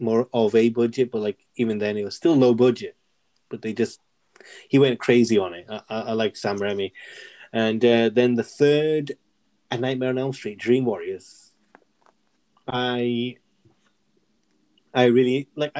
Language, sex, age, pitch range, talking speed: English, male, 20-39, 110-140 Hz, 165 wpm